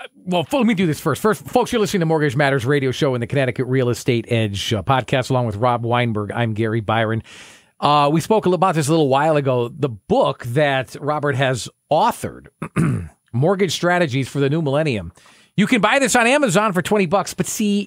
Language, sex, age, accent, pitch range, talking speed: English, male, 40-59, American, 120-185 Hz, 210 wpm